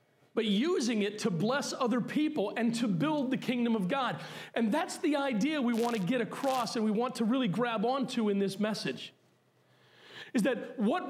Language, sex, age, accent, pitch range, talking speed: English, male, 40-59, American, 195-255 Hz, 195 wpm